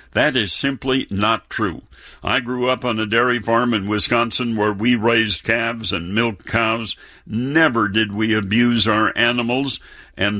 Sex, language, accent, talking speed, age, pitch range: male, English, American, 160 wpm, 60-79, 105-125 Hz